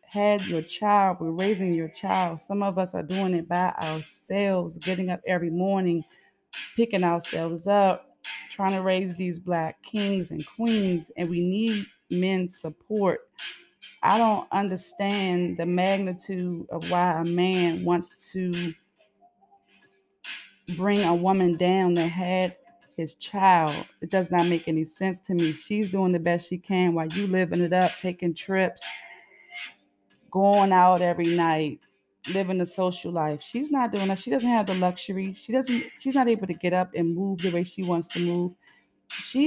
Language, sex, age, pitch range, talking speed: English, female, 20-39, 170-195 Hz, 165 wpm